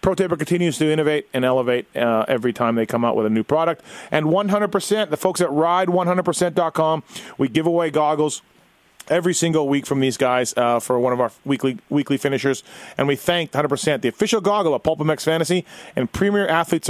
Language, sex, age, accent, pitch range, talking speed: English, male, 30-49, American, 135-165 Hz, 190 wpm